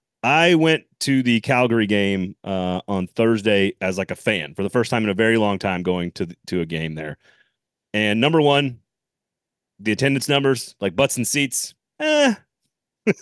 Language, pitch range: English, 105-145 Hz